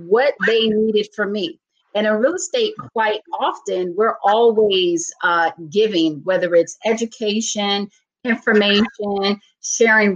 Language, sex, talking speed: English, female, 120 wpm